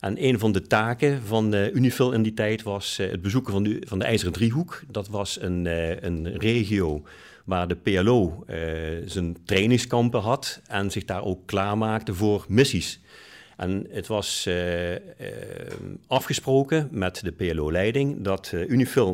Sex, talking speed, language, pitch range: male, 140 wpm, Dutch, 85-115 Hz